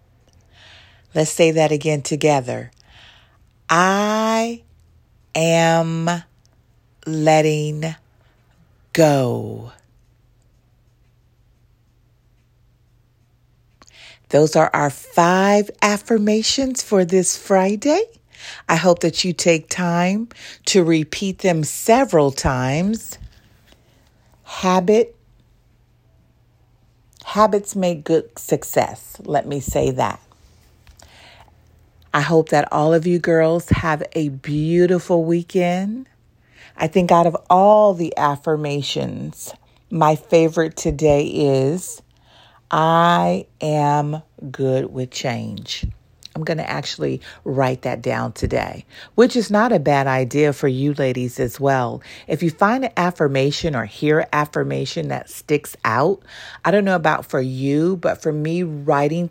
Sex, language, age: female, English, 40-59